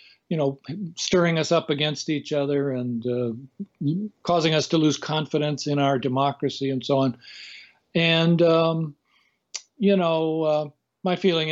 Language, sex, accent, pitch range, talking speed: English, male, American, 135-170 Hz, 145 wpm